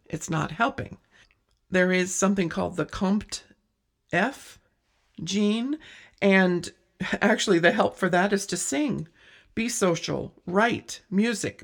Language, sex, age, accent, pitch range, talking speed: English, female, 50-69, American, 160-200 Hz, 125 wpm